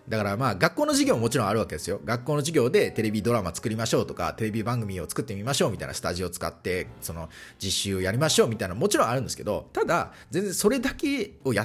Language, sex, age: Japanese, male, 30-49